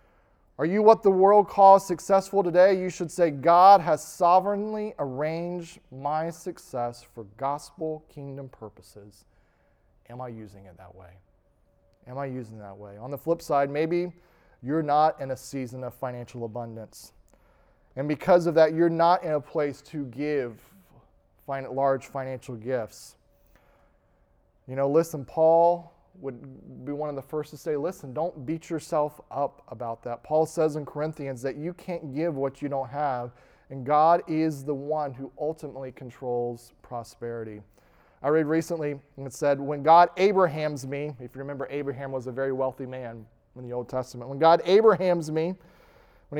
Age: 30-49